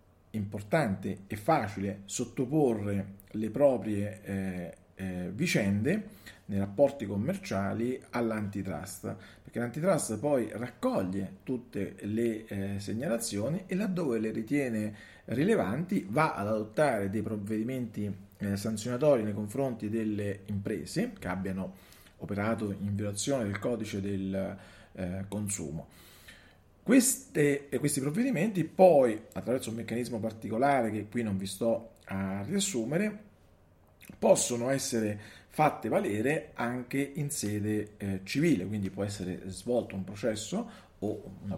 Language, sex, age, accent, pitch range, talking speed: Italian, male, 40-59, native, 95-125 Hz, 115 wpm